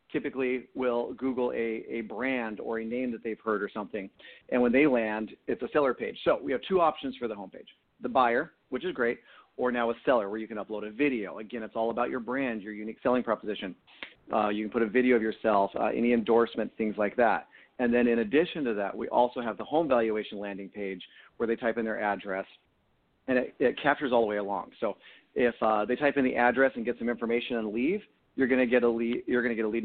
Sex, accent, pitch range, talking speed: male, American, 110-135 Hz, 245 wpm